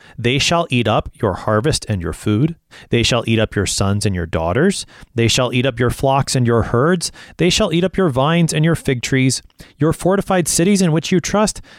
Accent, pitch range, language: American, 110-155 Hz, English